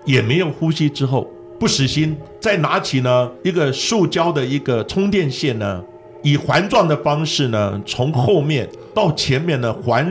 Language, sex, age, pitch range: Chinese, male, 50-69, 105-165 Hz